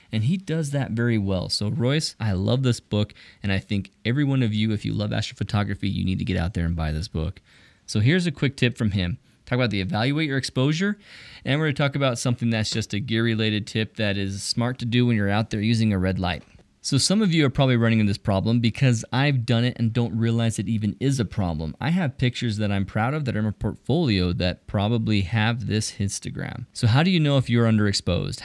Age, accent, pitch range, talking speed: 20-39, American, 100-130 Hz, 250 wpm